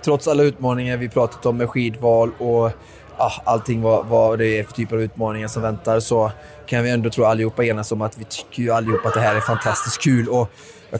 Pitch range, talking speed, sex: 110-120 Hz, 215 wpm, male